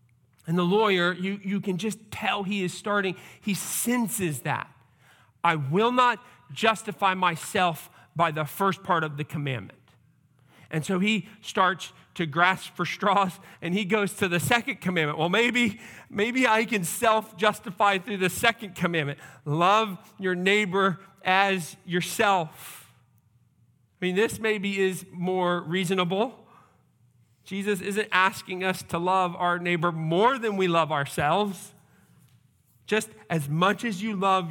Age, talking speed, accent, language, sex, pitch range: 40-59, 145 wpm, American, English, male, 145-195 Hz